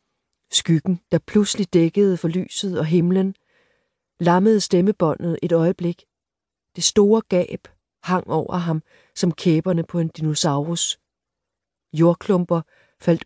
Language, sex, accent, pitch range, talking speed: Danish, female, native, 160-190 Hz, 115 wpm